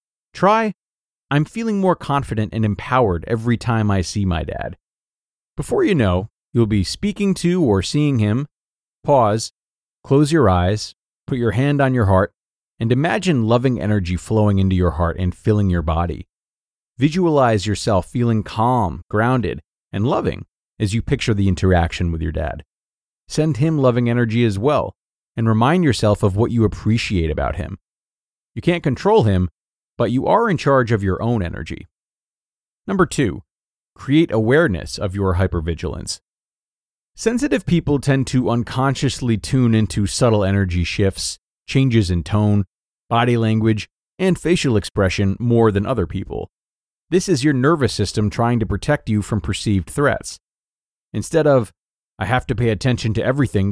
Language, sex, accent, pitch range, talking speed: English, male, American, 95-135 Hz, 155 wpm